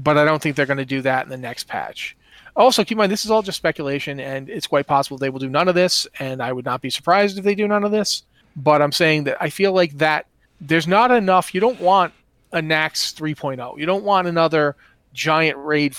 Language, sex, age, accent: English, male, 30-49, American